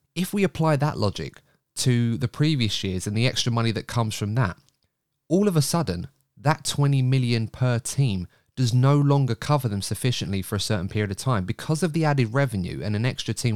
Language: English